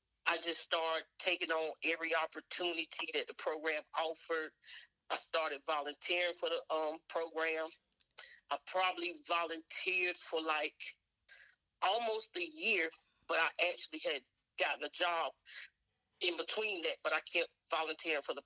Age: 40-59